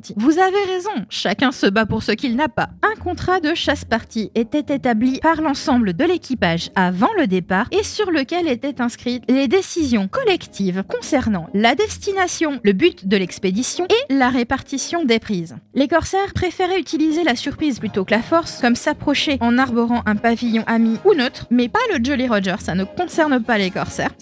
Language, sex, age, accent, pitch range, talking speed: French, female, 20-39, French, 215-305 Hz, 185 wpm